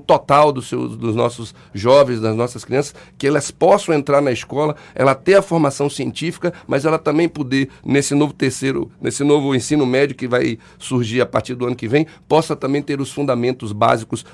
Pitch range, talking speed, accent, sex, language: 120-150 Hz, 190 wpm, Brazilian, male, Portuguese